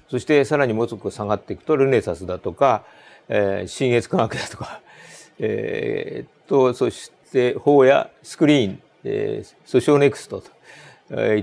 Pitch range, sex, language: 105-150 Hz, male, Japanese